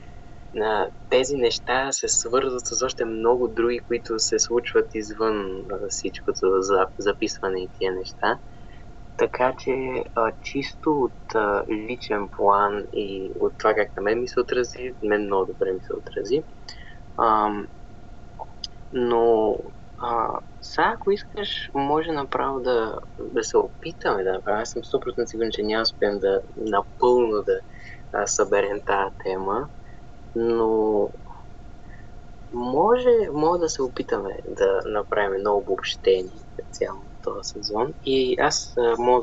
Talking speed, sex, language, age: 120 wpm, male, Bulgarian, 20-39